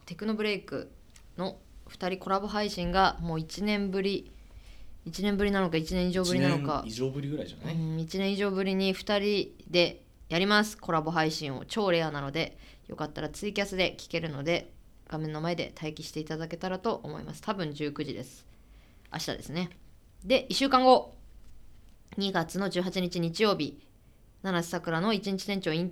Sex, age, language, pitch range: female, 20-39, Japanese, 145-190 Hz